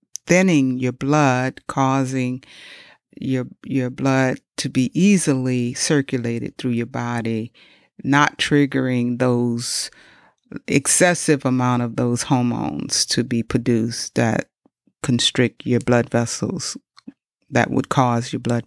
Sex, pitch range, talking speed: female, 125-170 Hz, 115 wpm